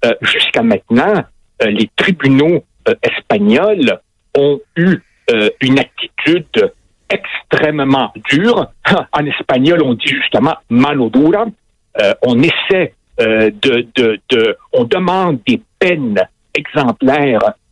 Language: French